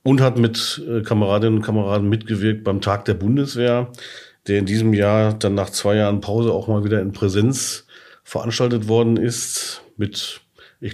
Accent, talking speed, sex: German, 170 wpm, male